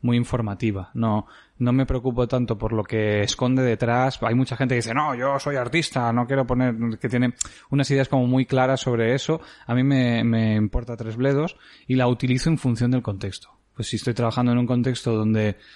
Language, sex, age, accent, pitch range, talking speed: English, male, 20-39, Spanish, 110-125 Hz, 210 wpm